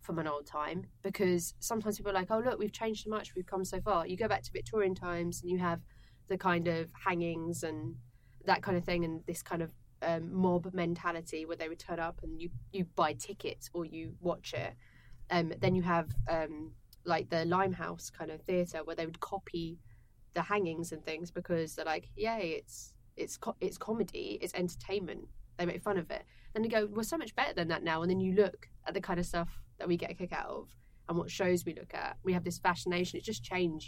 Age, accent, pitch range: 20-39, British, 125-180 Hz